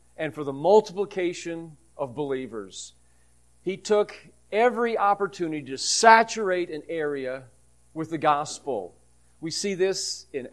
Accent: American